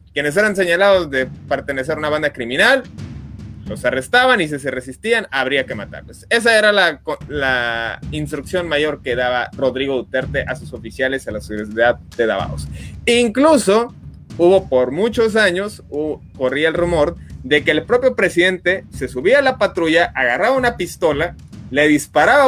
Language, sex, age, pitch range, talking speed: Spanish, male, 30-49, 120-180 Hz, 160 wpm